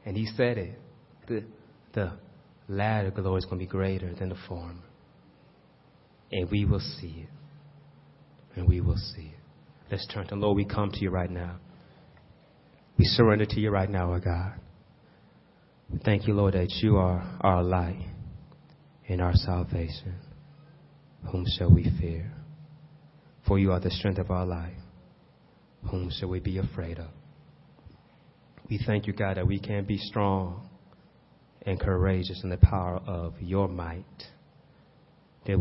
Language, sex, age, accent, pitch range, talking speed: English, male, 30-49, American, 90-115 Hz, 155 wpm